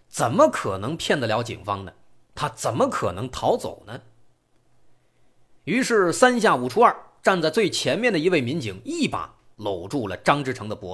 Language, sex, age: Chinese, male, 30-49